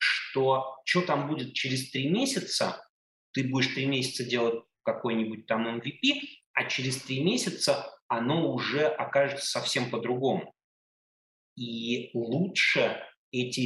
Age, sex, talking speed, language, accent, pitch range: 30-49, male, 120 wpm, Russian, native, 115-145 Hz